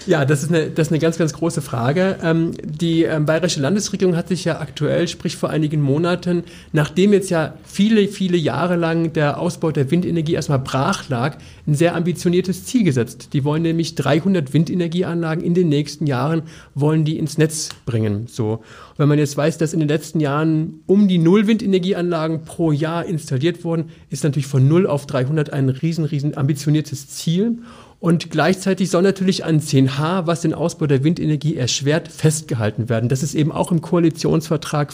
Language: German